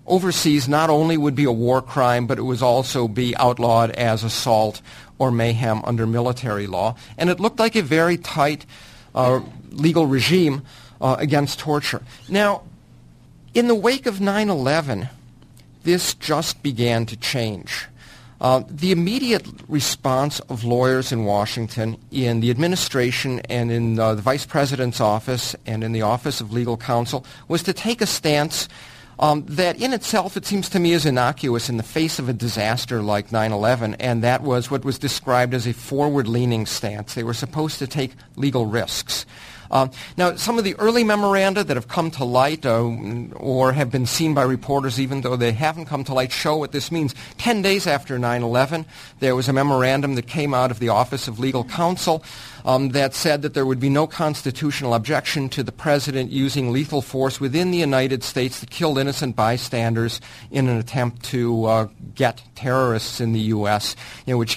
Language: English